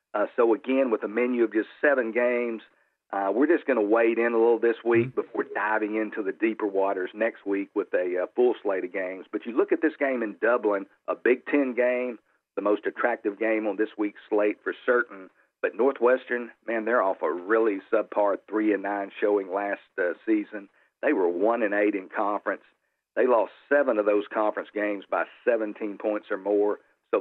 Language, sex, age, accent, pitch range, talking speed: English, male, 50-69, American, 105-125 Hz, 205 wpm